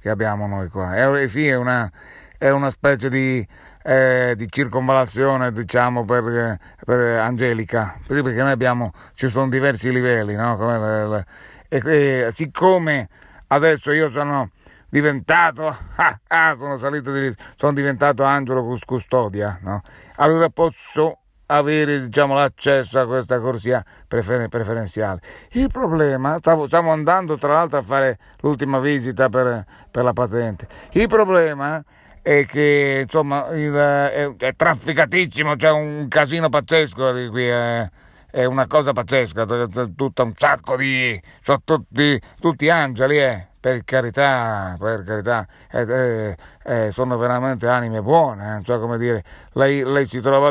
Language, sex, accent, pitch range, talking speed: Italian, male, native, 120-155 Hz, 145 wpm